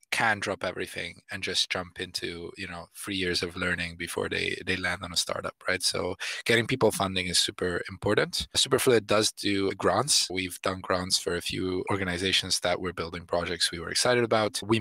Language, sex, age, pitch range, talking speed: English, male, 20-39, 90-110 Hz, 195 wpm